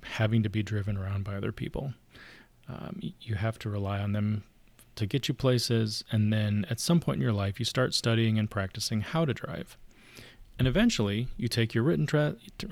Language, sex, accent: English, male, American